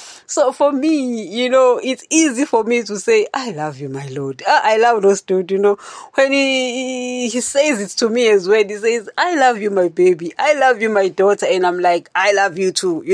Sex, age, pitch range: female, 30-49, 180-255 Hz